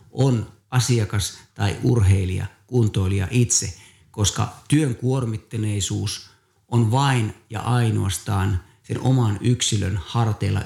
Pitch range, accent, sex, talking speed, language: 100-120 Hz, native, male, 95 wpm, Finnish